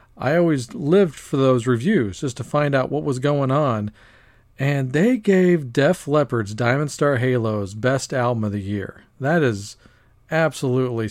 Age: 40-59